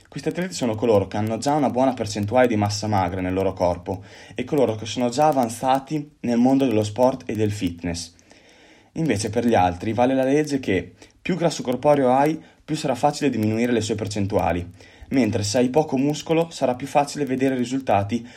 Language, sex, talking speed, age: Italian, male, 190 wpm, 20-39